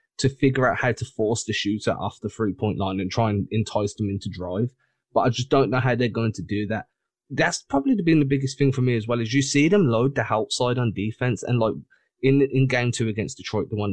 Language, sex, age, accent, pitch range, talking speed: English, male, 20-39, British, 105-130 Hz, 260 wpm